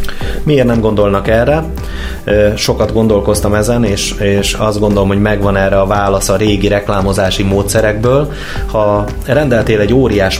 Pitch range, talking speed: 95-115 Hz, 140 wpm